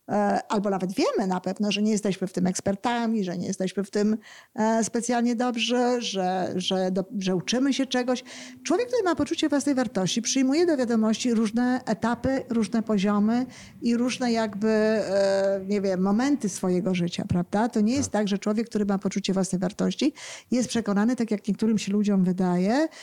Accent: native